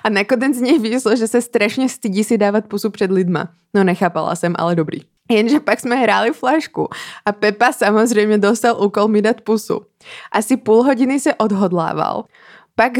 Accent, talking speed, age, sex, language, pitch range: native, 175 wpm, 20-39, female, Czech, 190-240 Hz